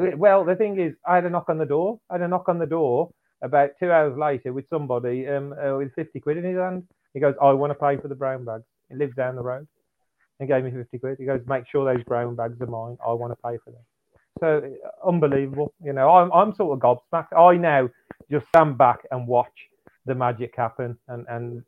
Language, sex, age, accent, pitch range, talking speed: English, male, 30-49, British, 125-150 Hz, 240 wpm